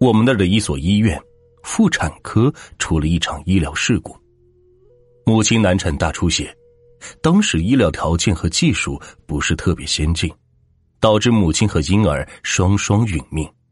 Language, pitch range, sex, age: Chinese, 80-115 Hz, male, 30-49